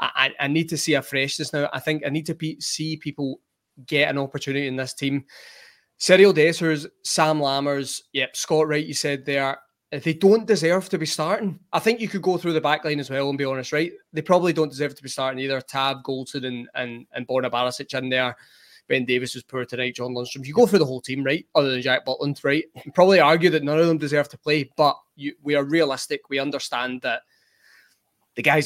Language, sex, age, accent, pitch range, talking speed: English, male, 20-39, British, 135-155 Hz, 225 wpm